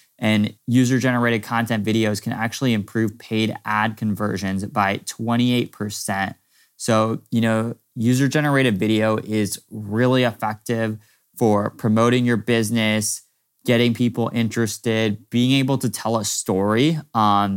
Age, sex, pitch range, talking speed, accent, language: 20-39, male, 105-120 Hz, 115 wpm, American, English